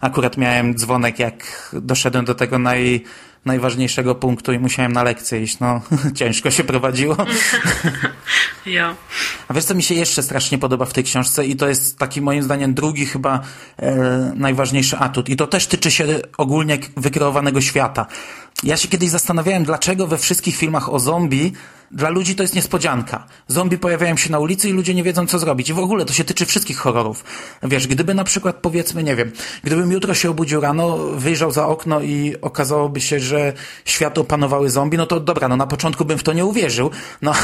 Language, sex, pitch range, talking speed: Polish, male, 135-175 Hz, 190 wpm